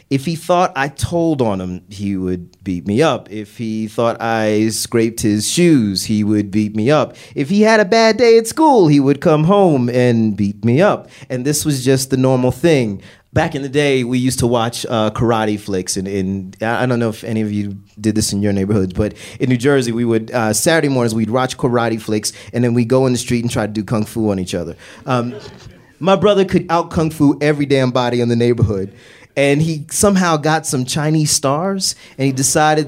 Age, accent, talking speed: 30-49, American, 225 wpm